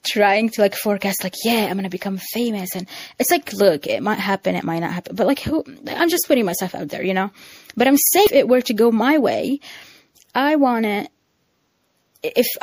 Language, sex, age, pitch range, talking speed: English, female, 20-39, 180-240 Hz, 215 wpm